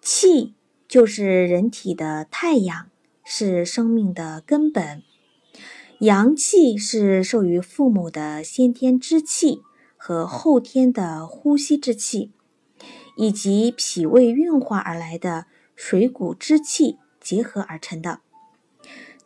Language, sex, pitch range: Chinese, female, 185-280 Hz